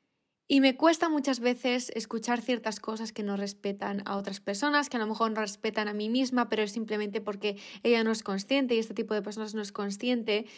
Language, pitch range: Spanish, 210-270 Hz